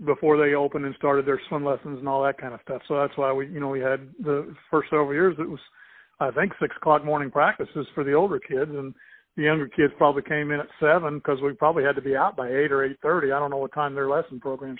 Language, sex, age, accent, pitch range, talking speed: English, male, 50-69, American, 145-160 Hz, 270 wpm